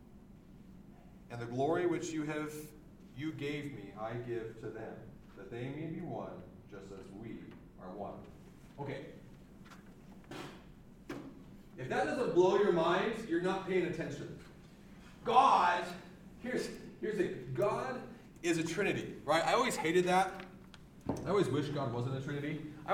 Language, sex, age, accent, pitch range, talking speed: English, male, 40-59, American, 145-195 Hz, 140 wpm